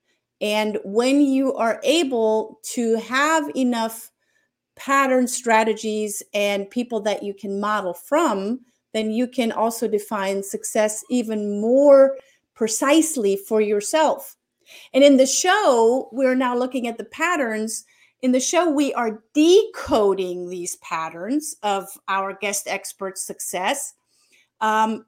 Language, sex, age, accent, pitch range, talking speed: English, female, 40-59, American, 210-265 Hz, 125 wpm